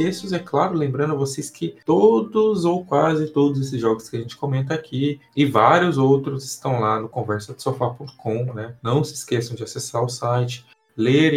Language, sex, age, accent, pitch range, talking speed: Portuguese, male, 20-39, Brazilian, 110-140 Hz, 190 wpm